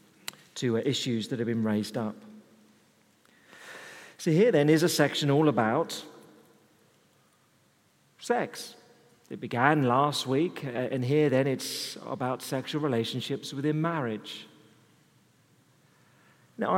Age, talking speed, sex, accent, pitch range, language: 40-59, 105 wpm, male, British, 110-145 Hz, English